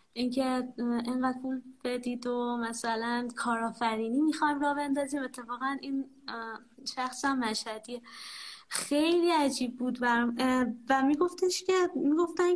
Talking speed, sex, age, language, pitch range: 100 wpm, female, 20-39, Persian, 240-300 Hz